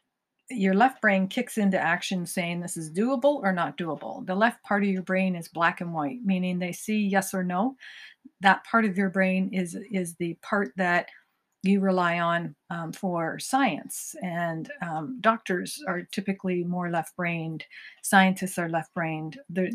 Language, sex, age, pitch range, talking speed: English, female, 50-69, 175-210 Hz, 170 wpm